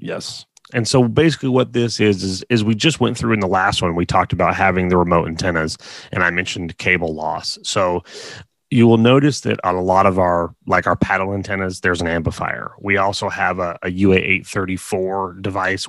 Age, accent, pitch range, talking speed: 30-49, American, 90-105 Hz, 200 wpm